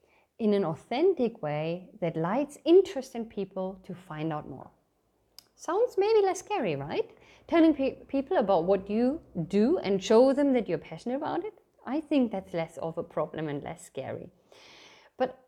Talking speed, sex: 170 wpm, female